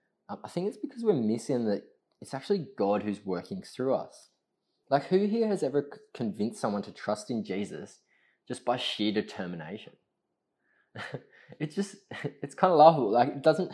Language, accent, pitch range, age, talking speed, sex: English, Australian, 100-140 Hz, 20-39, 165 wpm, male